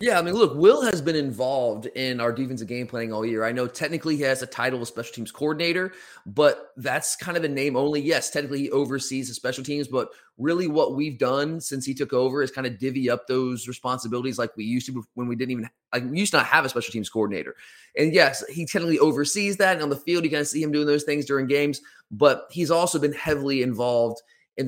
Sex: male